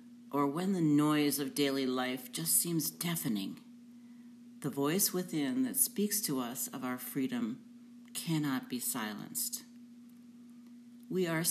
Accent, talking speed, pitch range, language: American, 130 wpm, 145-240 Hz, English